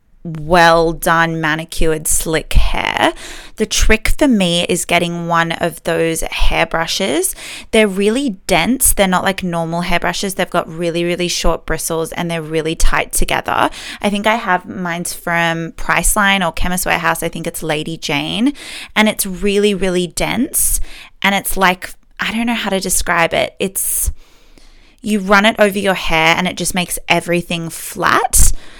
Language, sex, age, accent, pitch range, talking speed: English, female, 20-39, Australian, 165-210 Hz, 165 wpm